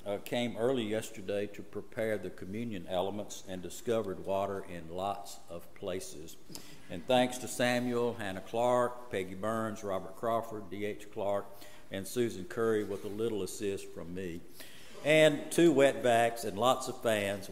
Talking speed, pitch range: 155 wpm, 95-125 Hz